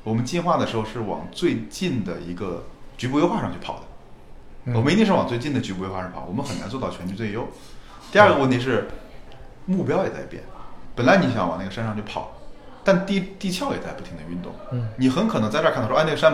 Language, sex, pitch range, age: Chinese, male, 100-130 Hz, 30-49